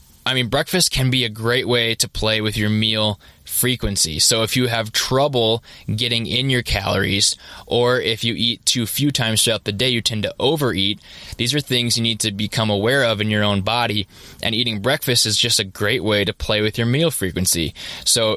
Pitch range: 100-120 Hz